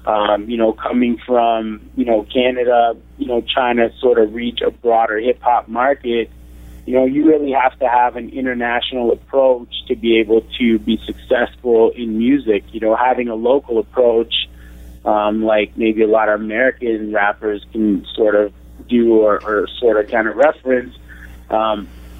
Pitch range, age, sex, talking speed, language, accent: 105-125 Hz, 30-49, male, 170 wpm, English, American